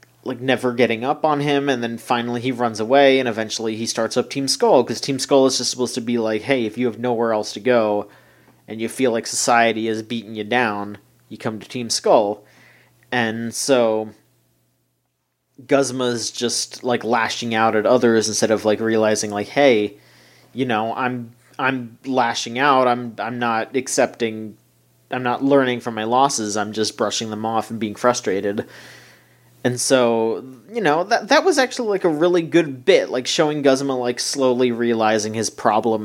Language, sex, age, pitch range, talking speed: English, male, 30-49, 110-130 Hz, 185 wpm